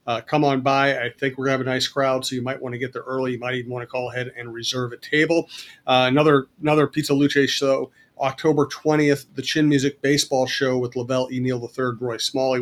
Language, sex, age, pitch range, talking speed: English, male, 40-59, 130-155 Hz, 245 wpm